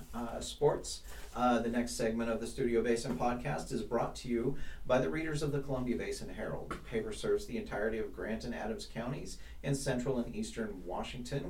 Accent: American